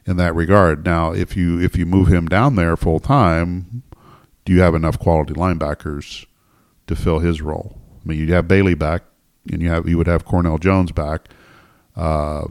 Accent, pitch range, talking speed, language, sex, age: American, 80-90 Hz, 190 wpm, English, male, 40-59